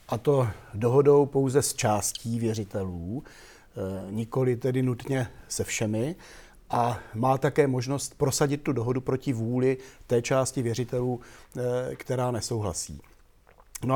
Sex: male